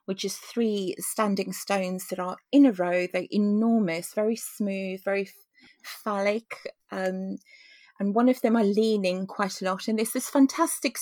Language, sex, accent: English, female, British